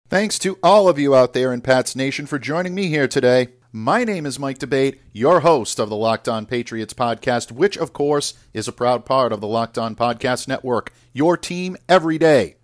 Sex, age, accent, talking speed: male, 50-69, American, 215 wpm